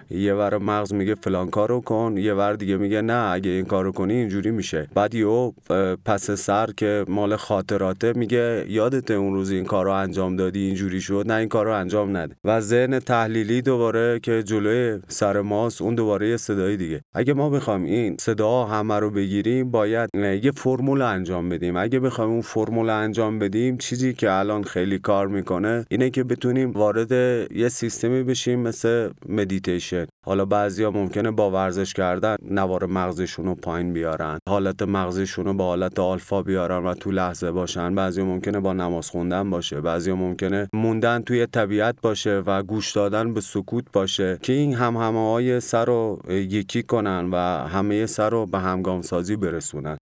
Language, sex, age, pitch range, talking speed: Persian, male, 30-49, 95-115 Hz, 175 wpm